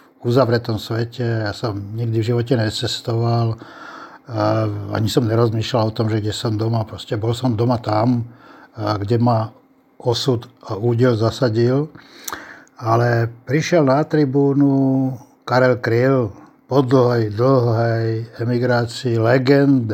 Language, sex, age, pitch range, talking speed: Slovak, male, 60-79, 115-135 Hz, 115 wpm